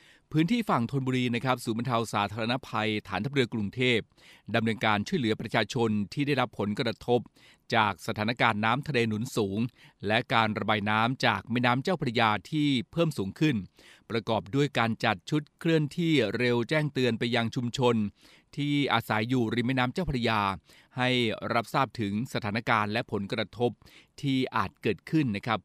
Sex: male